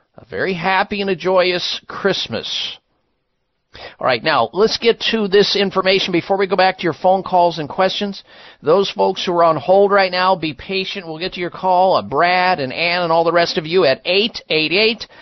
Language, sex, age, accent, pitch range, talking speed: English, male, 50-69, American, 145-190 Hz, 205 wpm